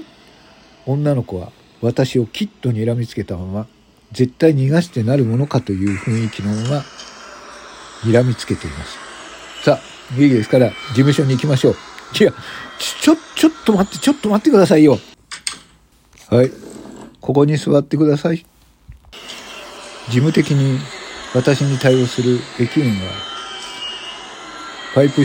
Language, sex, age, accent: Japanese, male, 50-69, native